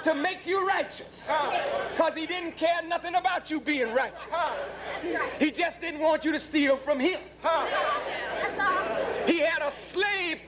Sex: male